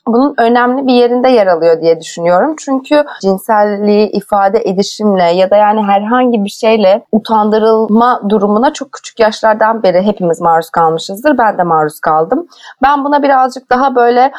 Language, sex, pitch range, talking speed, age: Turkish, female, 190-265 Hz, 150 wpm, 30-49